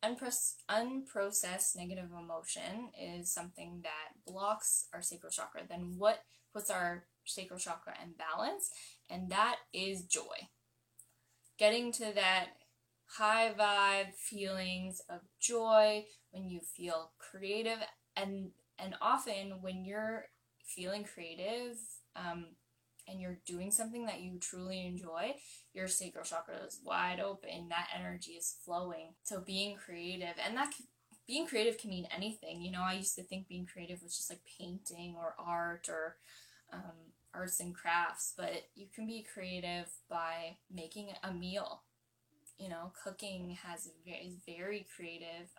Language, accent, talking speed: English, American, 140 wpm